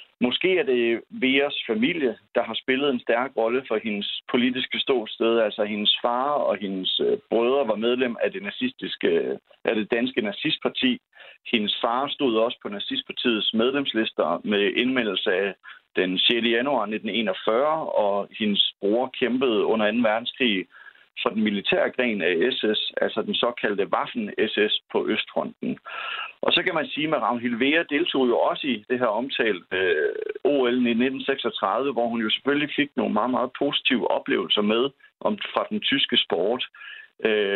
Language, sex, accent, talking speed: Danish, male, native, 155 wpm